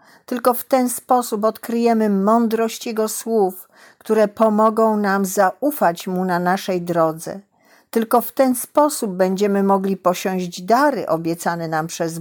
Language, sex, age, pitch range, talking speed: Polish, female, 50-69, 180-225 Hz, 135 wpm